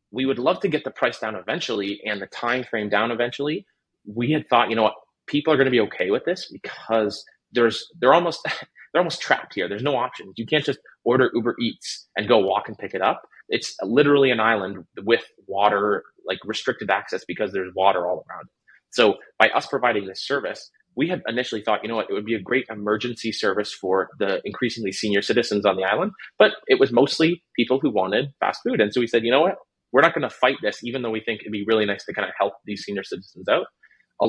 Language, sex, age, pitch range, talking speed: English, male, 30-49, 105-135 Hz, 235 wpm